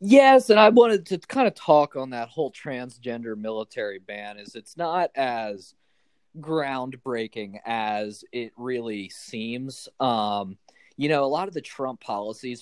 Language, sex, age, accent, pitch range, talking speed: English, male, 20-39, American, 110-140 Hz, 150 wpm